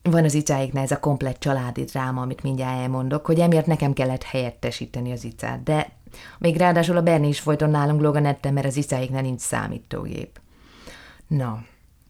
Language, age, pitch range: Hungarian, 30-49, 130-150 Hz